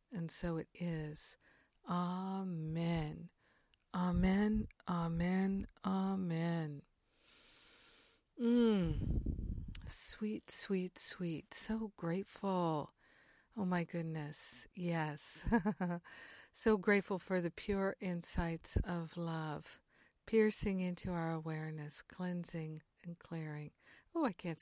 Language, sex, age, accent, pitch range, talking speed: English, female, 50-69, American, 160-195 Hz, 90 wpm